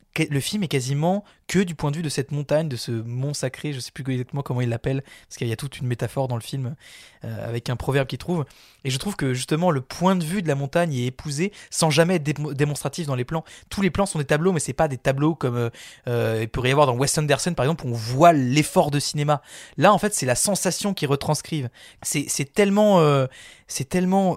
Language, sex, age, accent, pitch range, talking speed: French, male, 20-39, French, 130-165 Hz, 260 wpm